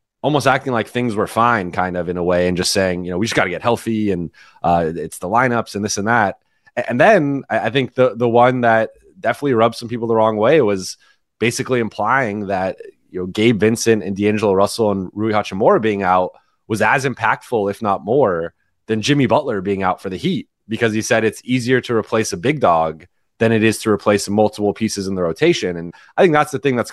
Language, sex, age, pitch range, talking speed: English, male, 30-49, 100-120 Hz, 230 wpm